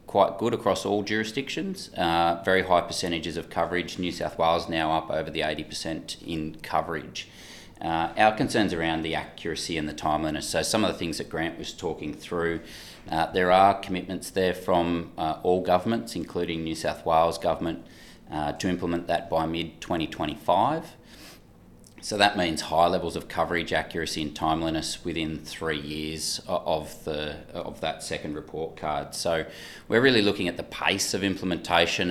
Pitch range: 80-90 Hz